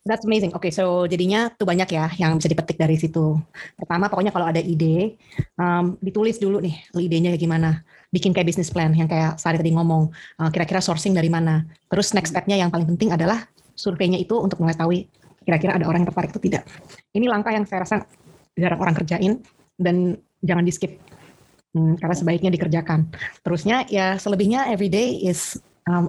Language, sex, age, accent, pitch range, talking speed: English, female, 20-39, Indonesian, 170-190 Hz, 185 wpm